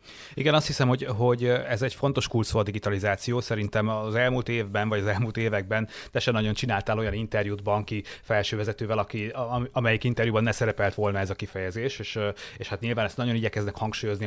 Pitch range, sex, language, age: 105-120 Hz, male, Hungarian, 30-49